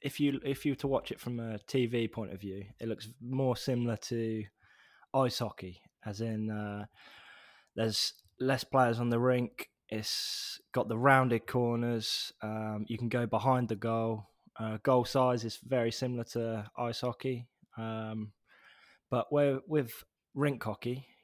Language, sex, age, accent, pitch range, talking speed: English, male, 10-29, British, 110-125 Hz, 160 wpm